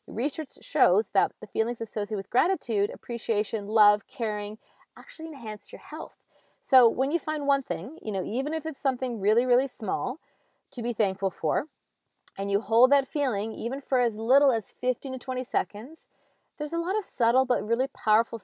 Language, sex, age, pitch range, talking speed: English, female, 30-49, 190-250 Hz, 180 wpm